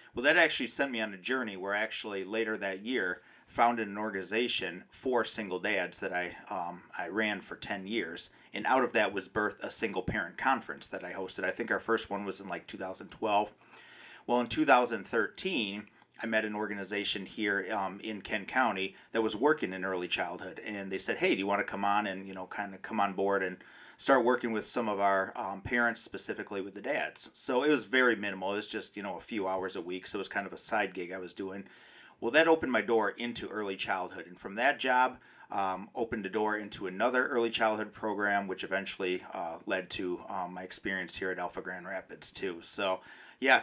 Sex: male